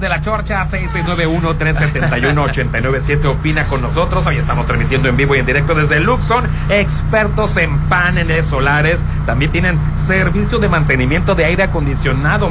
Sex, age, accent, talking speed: male, 40-59, Mexican, 150 wpm